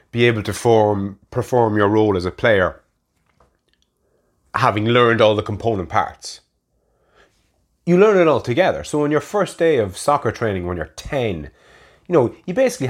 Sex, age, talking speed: male, 30-49, 165 wpm